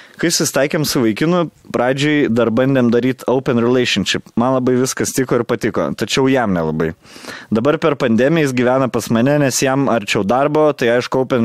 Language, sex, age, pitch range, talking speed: English, male, 20-39, 120-145 Hz, 175 wpm